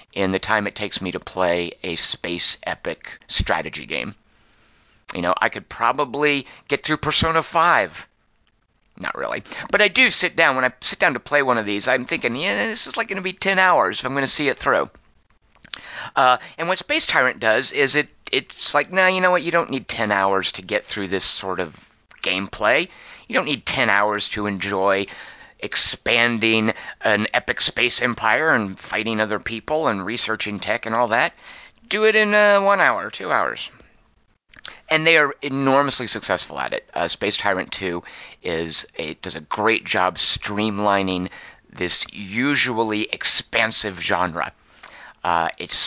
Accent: American